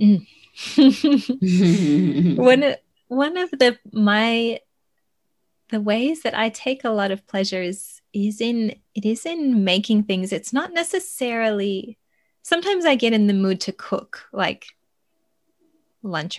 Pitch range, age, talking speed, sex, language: 190-250 Hz, 20-39, 125 wpm, female, English